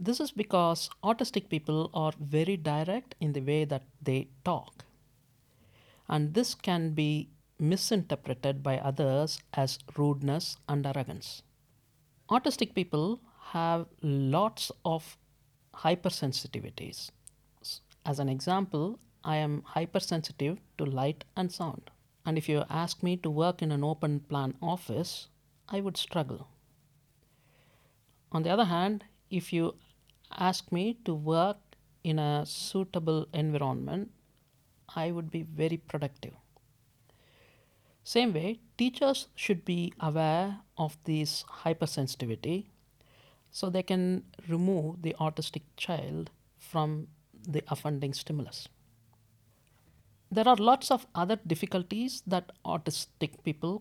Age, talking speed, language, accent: 50-69, 115 wpm, English, Indian